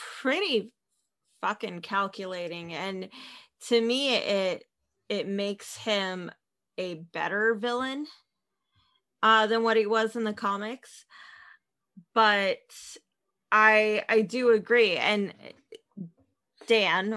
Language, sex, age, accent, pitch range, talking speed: English, female, 20-39, American, 195-230 Hz, 100 wpm